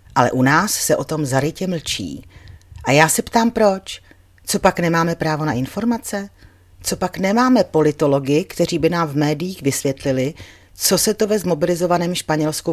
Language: Czech